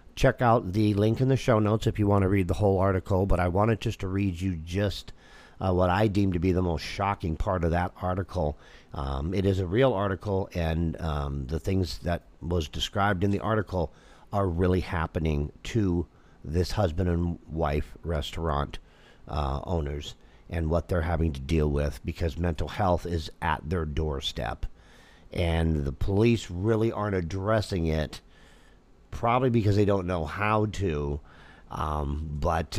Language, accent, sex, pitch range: English, American, male, 80-95 Hz